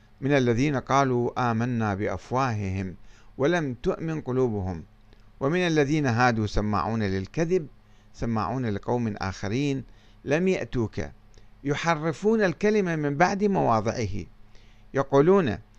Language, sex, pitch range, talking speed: Arabic, male, 105-140 Hz, 90 wpm